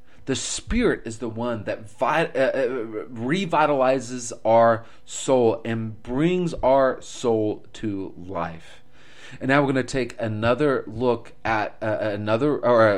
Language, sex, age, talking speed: English, male, 30-49, 120 wpm